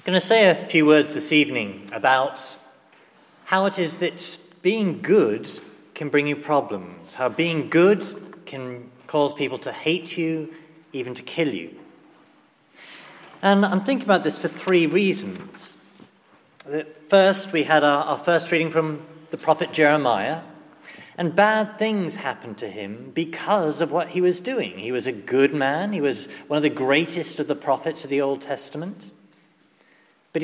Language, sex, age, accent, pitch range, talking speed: English, male, 40-59, British, 145-185 Hz, 160 wpm